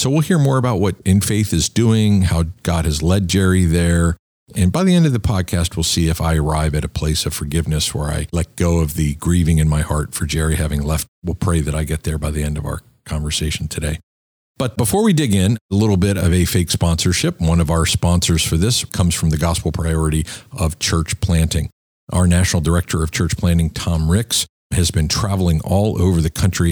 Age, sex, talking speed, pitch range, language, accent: 50-69, male, 225 wpm, 80-100 Hz, English, American